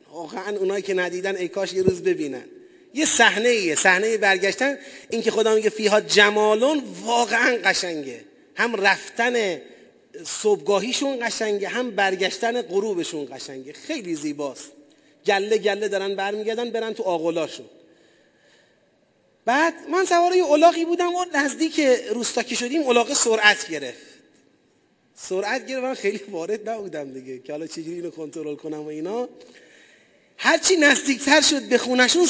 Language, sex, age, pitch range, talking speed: Persian, male, 30-49, 200-300 Hz, 135 wpm